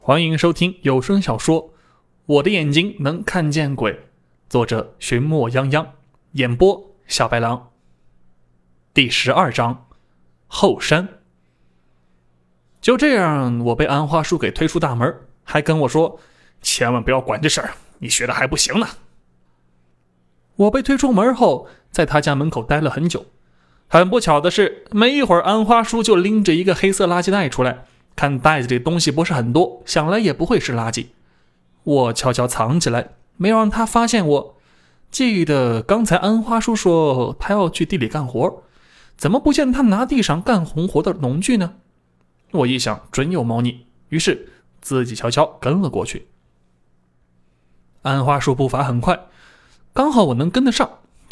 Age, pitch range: 20-39, 115-190 Hz